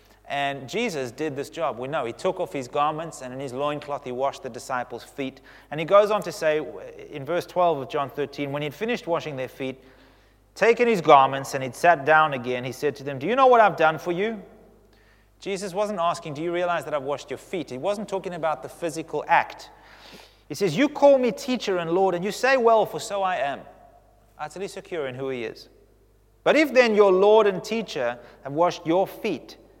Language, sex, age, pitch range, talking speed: English, male, 30-49, 125-180 Hz, 225 wpm